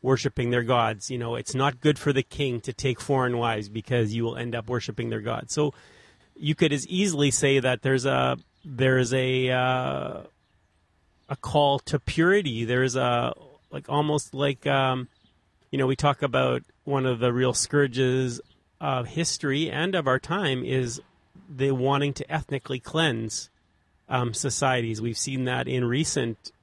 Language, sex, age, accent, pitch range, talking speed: English, male, 30-49, American, 120-140 Hz, 170 wpm